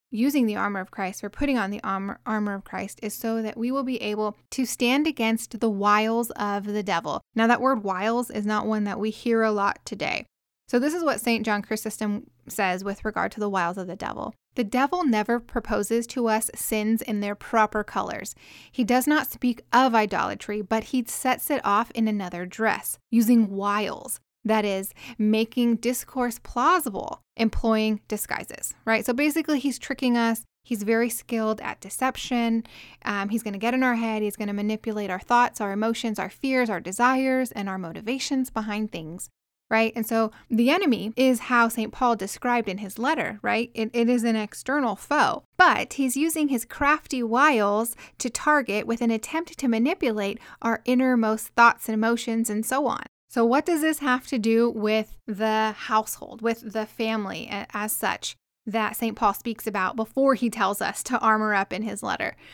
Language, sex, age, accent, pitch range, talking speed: English, female, 10-29, American, 215-250 Hz, 190 wpm